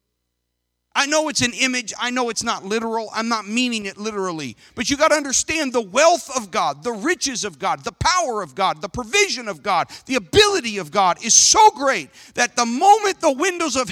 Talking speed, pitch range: 210 wpm, 200-290 Hz